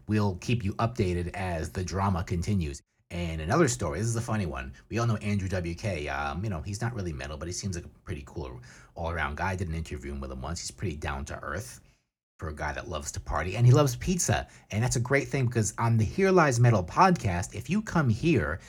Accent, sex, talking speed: American, male, 240 wpm